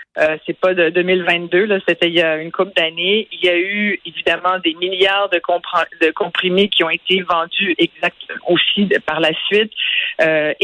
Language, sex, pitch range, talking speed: French, female, 175-215 Hz, 195 wpm